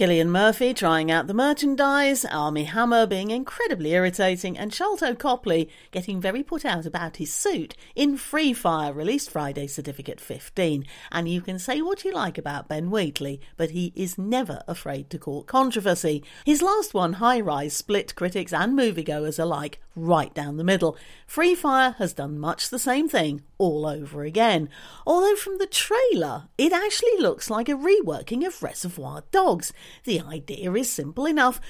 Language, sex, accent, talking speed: English, female, British, 165 wpm